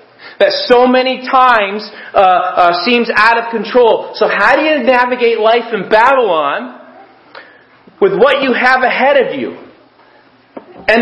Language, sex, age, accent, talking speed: English, male, 40-59, American, 140 wpm